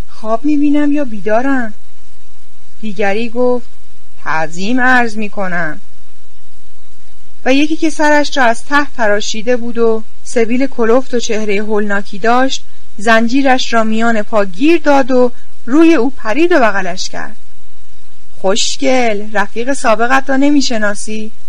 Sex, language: female, Persian